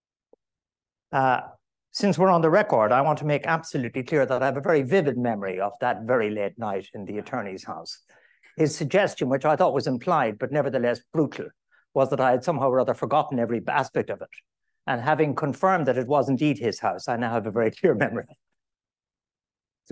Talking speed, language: 200 wpm, English